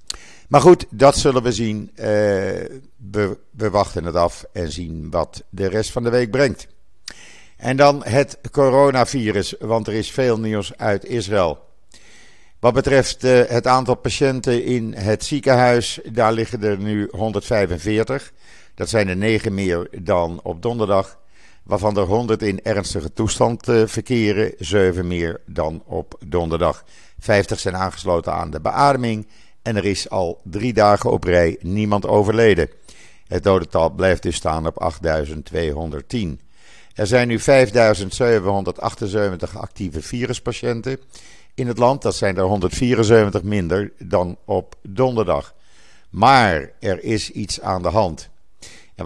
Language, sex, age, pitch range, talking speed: Dutch, male, 50-69, 95-120 Hz, 135 wpm